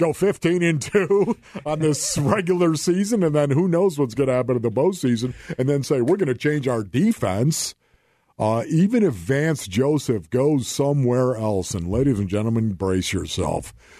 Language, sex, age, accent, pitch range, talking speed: English, male, 50-69, American, 105-135 Hz, 170 wpm